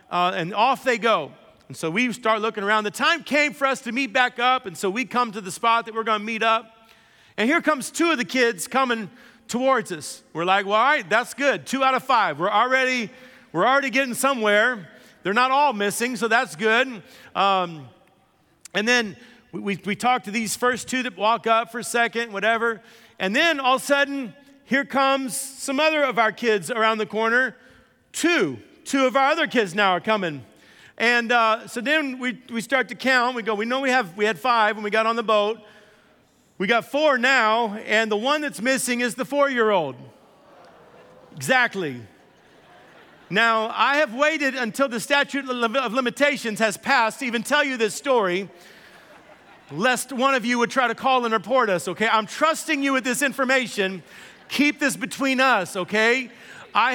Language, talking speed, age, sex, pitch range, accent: English, 200 wpm, 40-59, male, 215-265 Hz, American